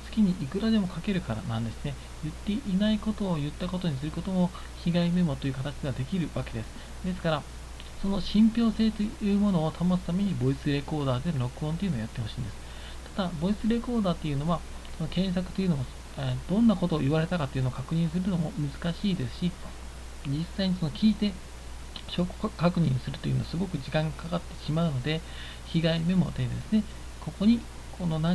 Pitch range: 130-185 Hz